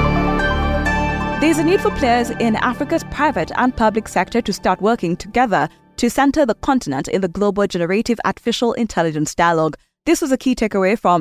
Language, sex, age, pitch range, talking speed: English, female, 20-39, 180-245 Hz, 170 wpm